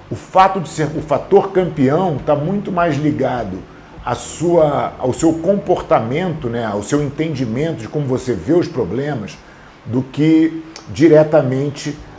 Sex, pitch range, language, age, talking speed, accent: male, 120-160 Hz, English, 40-59, 145 wpm, Brazilian